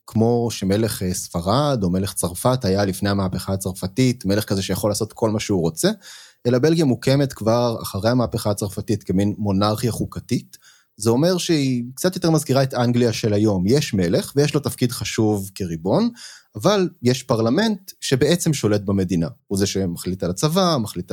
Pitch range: 100-140 Hz